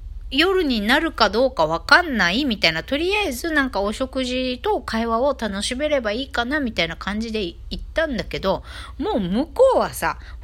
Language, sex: Japanese, female